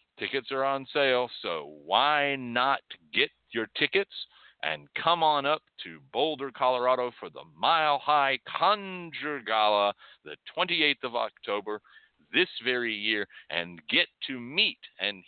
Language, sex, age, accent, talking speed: English, male, 50-69, American, 140 wpm